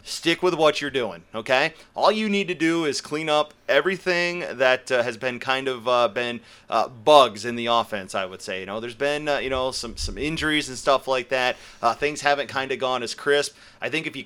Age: 30-49